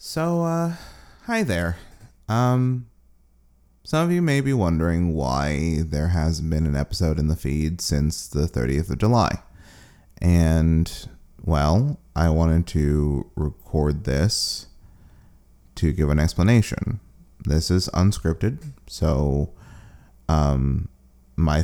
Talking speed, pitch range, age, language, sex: 115 wpm, 75-90 Hz, 30-49, English, male